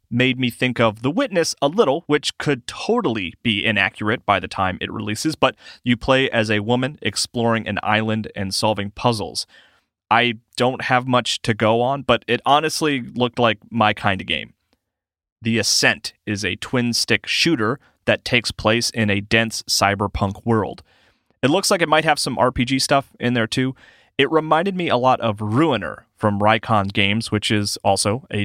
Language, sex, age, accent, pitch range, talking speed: English, male, 30-49, American, 105-130 Hz, 180 wpm